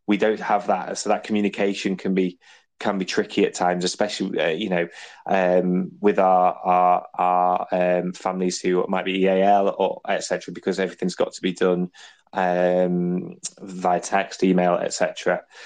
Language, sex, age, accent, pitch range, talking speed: English, male, 20-39, British, 90-100 Hz, 170 wpm